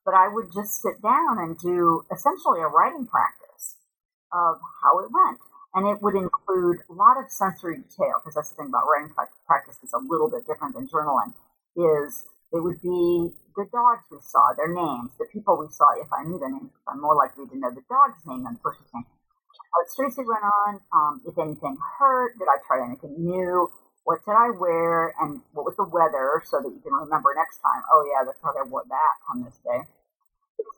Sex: female